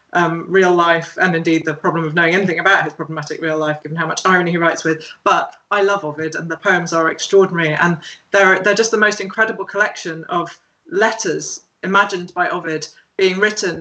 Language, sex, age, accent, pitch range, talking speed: English, female, 20-39, British, 165-210 Hz, 200 wpm